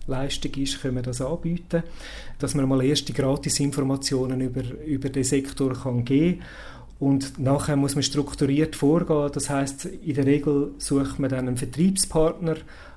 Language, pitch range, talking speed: English, 135-150 Hz, 155 wpm